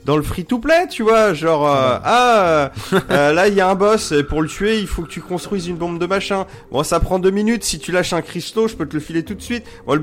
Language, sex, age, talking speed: French, male, 30-49, 300 wpm